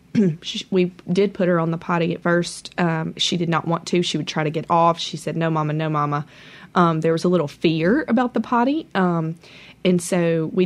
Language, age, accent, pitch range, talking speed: English, 20-39, American, 165-190 Hz, 225 wpm